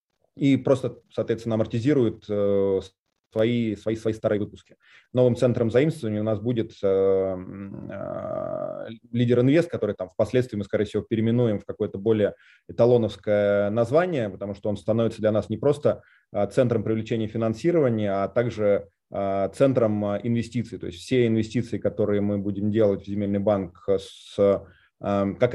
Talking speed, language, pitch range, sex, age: 135 wpm, Russian, 105-125 Hz, male, 20-39